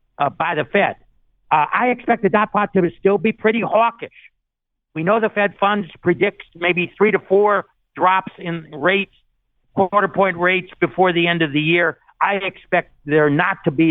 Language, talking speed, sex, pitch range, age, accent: English, 185 wpm, male, 145-180 Hz, 60-79, American